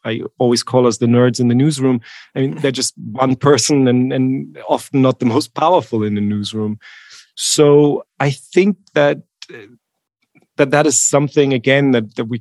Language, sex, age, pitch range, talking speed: English, male, 30-49, 115-140 Hz, 180 wpm